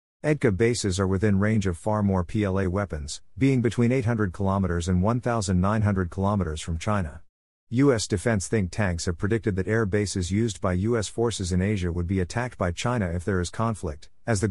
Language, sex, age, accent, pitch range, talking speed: English, male, 50-69, American, 90-115 Hz, 185 wpm